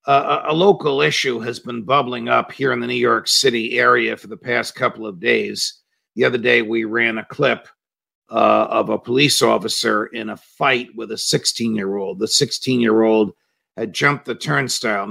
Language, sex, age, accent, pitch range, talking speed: English, male, 50-69, American, 115-135 Hz, 180 wpm